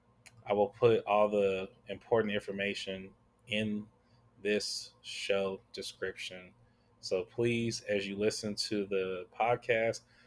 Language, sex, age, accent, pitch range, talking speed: English, male, 20-39, American, 100-120 Hz, 110 wpm